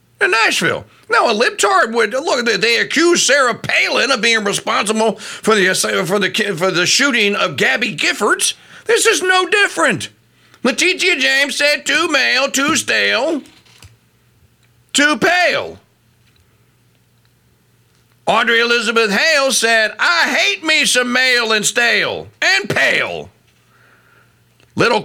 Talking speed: 120 wpm